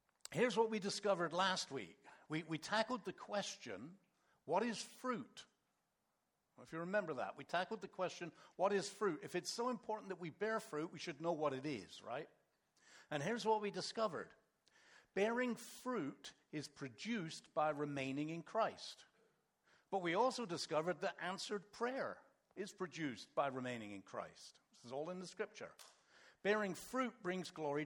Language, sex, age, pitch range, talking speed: English, male, 60-79, 155-215 Hz, 165 wpm